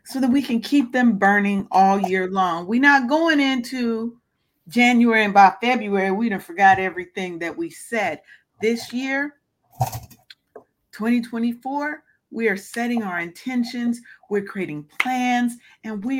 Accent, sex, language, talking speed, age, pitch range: American, female, English, 140 wpm, 40-59, 180-240 Hz